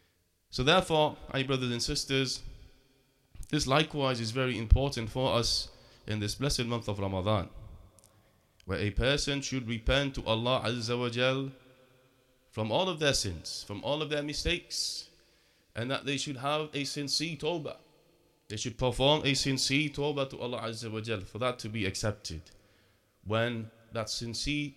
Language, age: English, 30-49